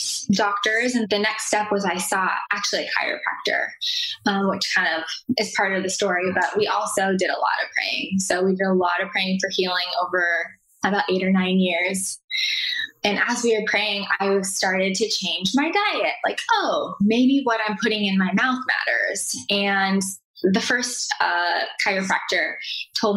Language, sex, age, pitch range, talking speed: English, female, 10-29, 185-235 Hz, 180 wpm